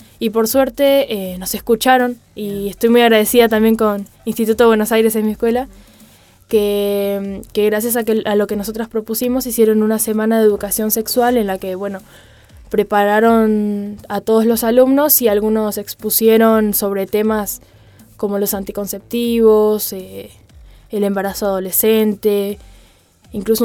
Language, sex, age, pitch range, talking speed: Spanish, female, 10-29, 205-235 Hz, 145 wpm